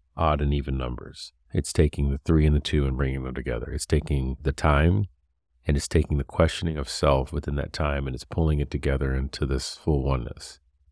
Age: 40-59